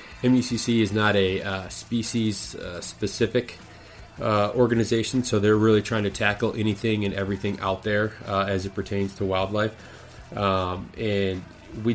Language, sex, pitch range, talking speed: English, male, 100-115 Hz, 140 wpm